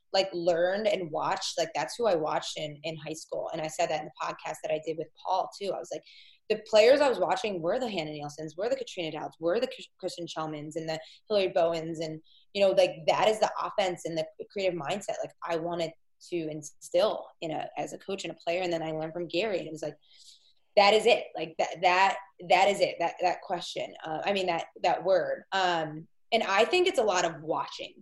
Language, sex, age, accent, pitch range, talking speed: English, female, 20-39, American, 160-205 Hz, 240 wpm